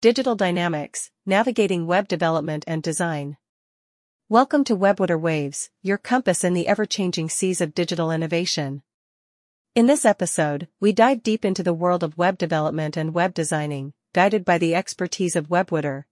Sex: female